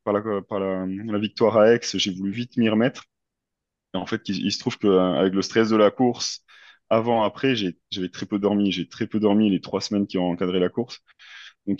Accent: French